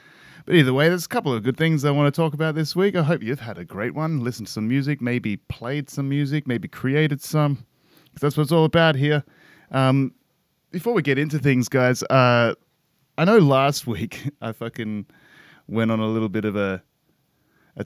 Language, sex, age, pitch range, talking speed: English, male, 20-39, 110-140 Hz, 210 wpm